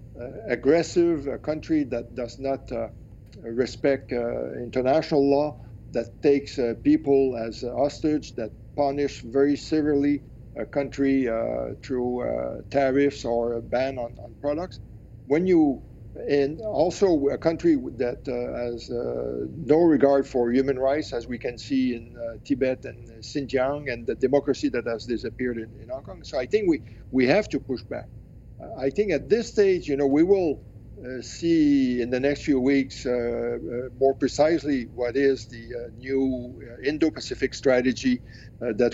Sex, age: male, 50-69